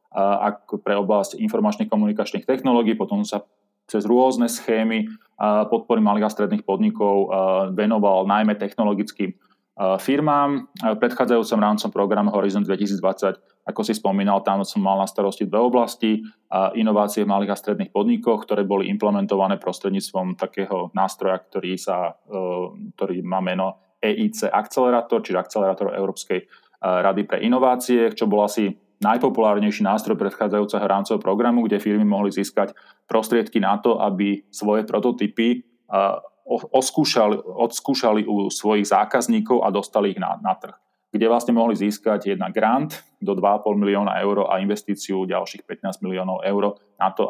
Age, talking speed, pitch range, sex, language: 30-49, 135 wpm, 100-115 Hz, male, Slovak